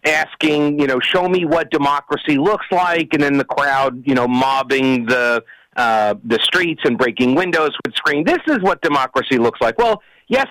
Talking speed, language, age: 190 wpm, English, 50-69